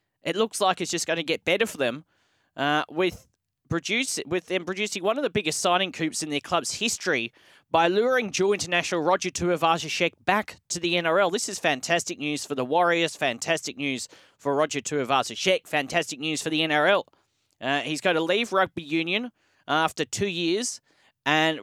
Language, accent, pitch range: English, Australian, 150-175 Hz